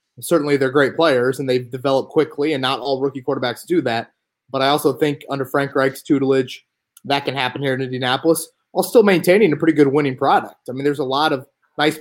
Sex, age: male, 20-39